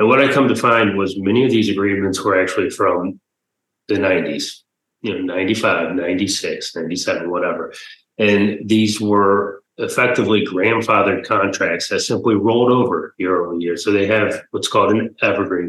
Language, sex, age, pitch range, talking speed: English, male, 30-49, 100-125 Hz, 155 wpm